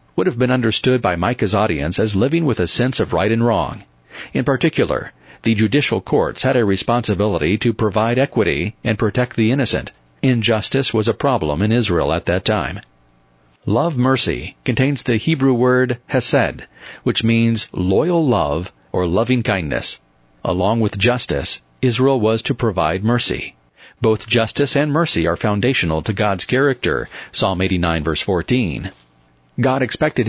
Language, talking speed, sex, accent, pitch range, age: English, 155 wpm, male, American, 95-130 Hz, 40-59